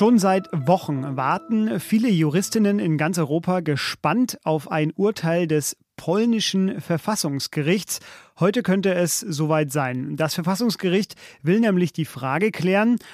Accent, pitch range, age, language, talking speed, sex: German, 155-195 Hz, 40-59, German, 130 wpm, male